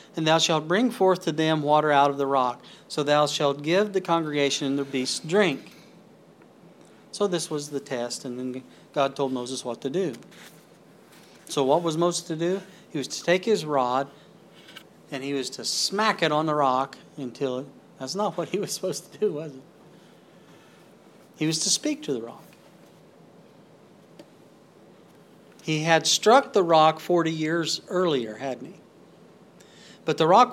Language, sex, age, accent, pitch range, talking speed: English, male, 40-59, American, 135-170 Hz, 175 wpm